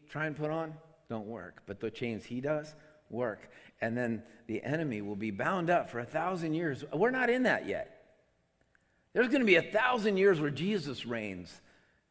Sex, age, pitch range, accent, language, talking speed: male, 50-69, 115-185 Hz, American, English, 195 wpm